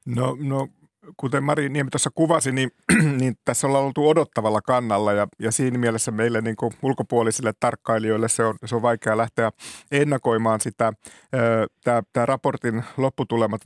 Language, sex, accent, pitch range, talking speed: Finnish, male, native, 110-125 Hz, 155 wpm